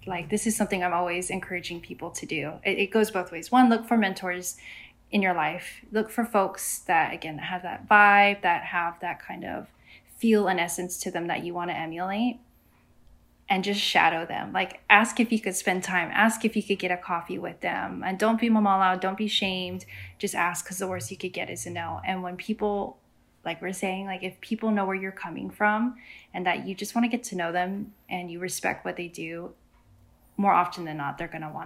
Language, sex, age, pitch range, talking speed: English, female, 10-29, 180-210 Hz, 230 wpm